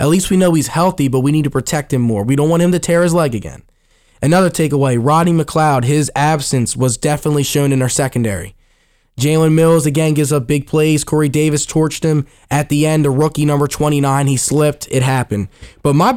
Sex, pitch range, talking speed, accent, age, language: male, 135-165 Hz, 215 wpm, American, 20-39, English